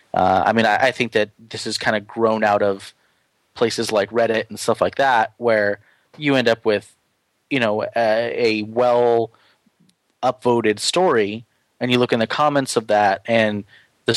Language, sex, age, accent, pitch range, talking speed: English, male, 30-49, American, 110-135 Hz, 180 wpm